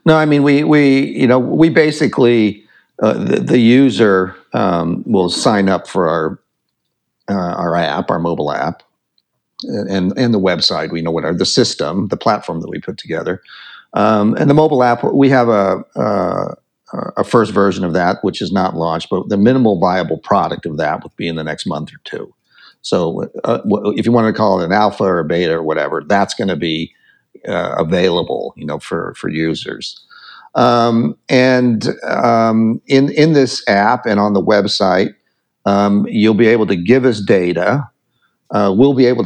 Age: 50-69